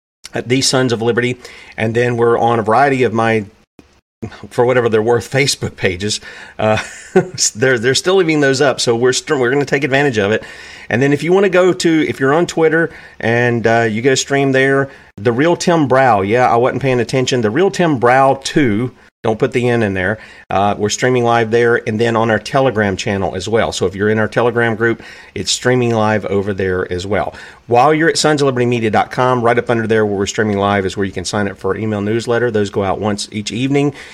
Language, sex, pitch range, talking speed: English, male, 105-135 Hz, 225 wpm